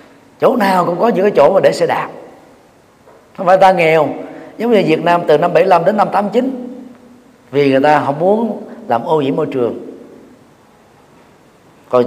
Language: Vietnamese